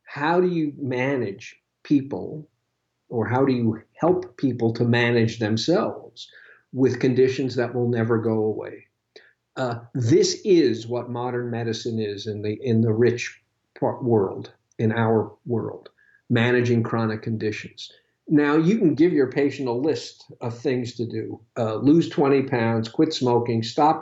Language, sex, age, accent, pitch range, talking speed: English, male, 50-69, American, 115-150 Hz, 150 wpm